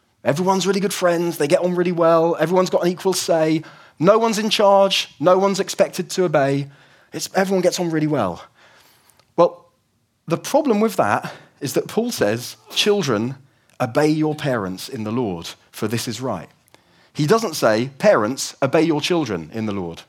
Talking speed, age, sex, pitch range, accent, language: 175 wpm, 30-49, male, 125-180 Hz, British, English